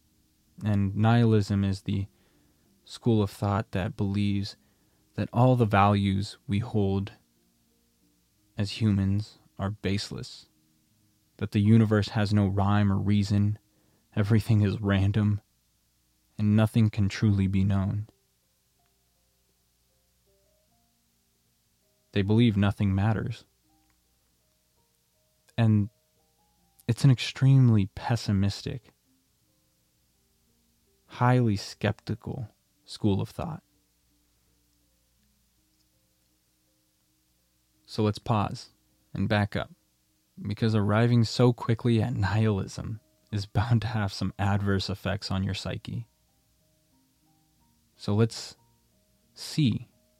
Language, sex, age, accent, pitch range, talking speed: English, male, 20-39, American, 95-115 Hz, 90 wpm